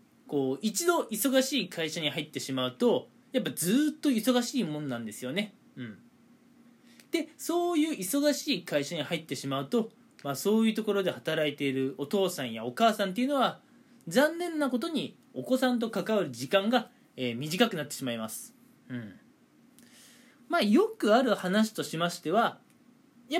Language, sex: Japanese, male